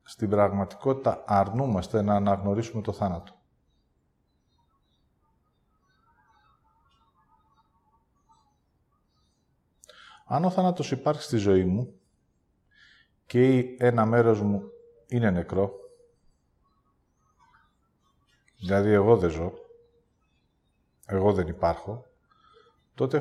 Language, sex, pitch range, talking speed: English, male, 95-130 Hz, 70 wpm